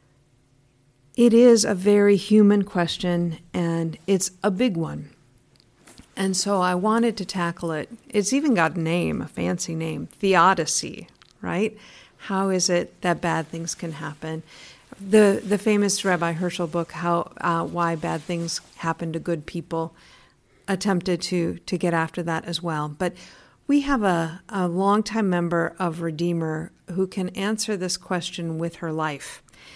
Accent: American